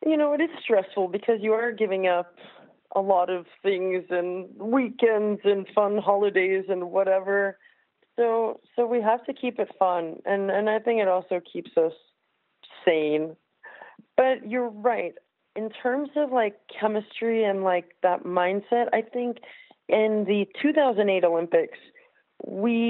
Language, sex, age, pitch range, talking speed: English, female, 30-49, 175-225 Hz, 150 wpm